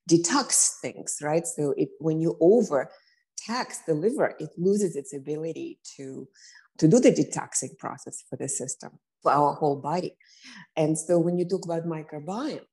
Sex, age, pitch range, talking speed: female, 20-39, 155-200 Hz, 165 wpm